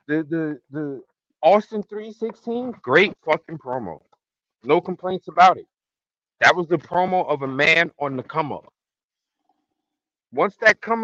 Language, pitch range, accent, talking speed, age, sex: English, 115-185 Hz, American, 145 wpm, 50-69, male